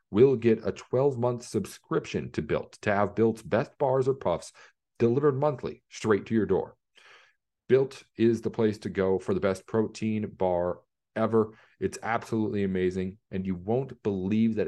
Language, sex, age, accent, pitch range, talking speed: English, male, 40-59, American, 95-115 Hz, 165 wpm